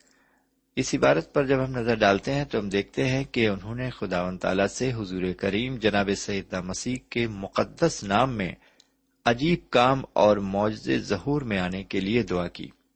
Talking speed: 175 wpm